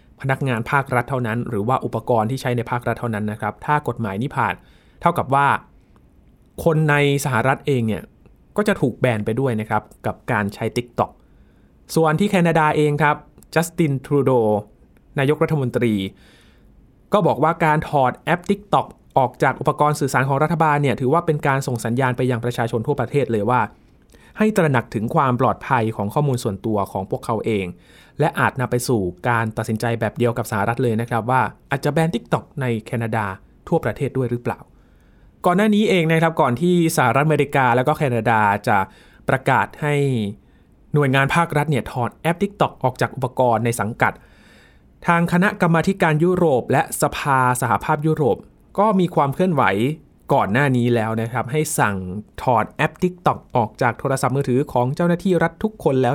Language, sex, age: Thai, male, 20-39